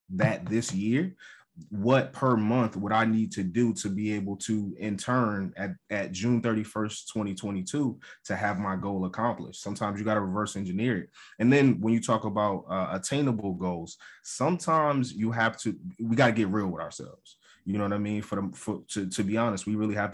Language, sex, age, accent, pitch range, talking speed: English, male, 20-39, American, 95-115 Hz, 205 wpm